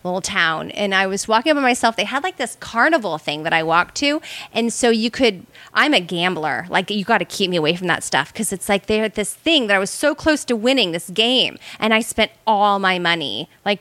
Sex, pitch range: female, 190-260 Hz